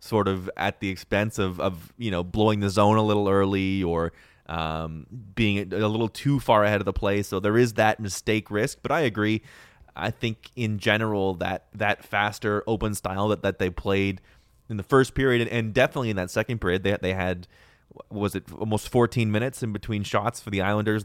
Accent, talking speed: American, 210 wpm